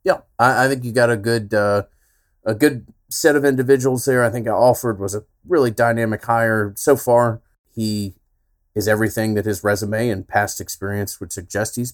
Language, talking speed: English, 180 wpm